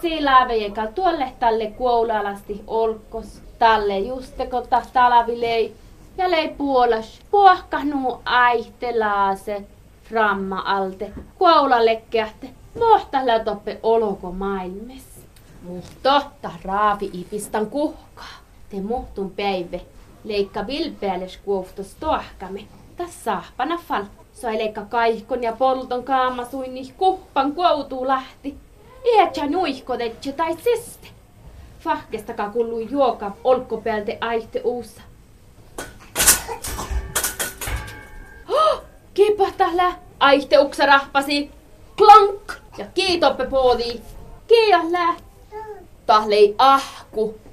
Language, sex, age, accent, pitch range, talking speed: Czech, female, 20-39, Finnish, 220-310 Hz, 90 wpm